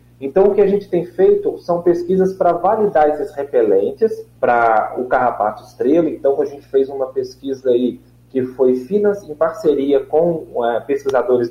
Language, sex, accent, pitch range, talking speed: Portuguese, male, Brazilian, 135-195 Hz, 150 wpm